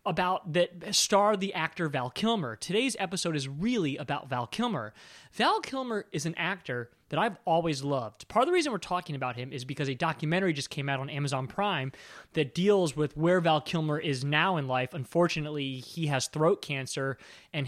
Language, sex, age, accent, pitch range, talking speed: English, male, 20-39, American, 140-200 Hz, 195 wpm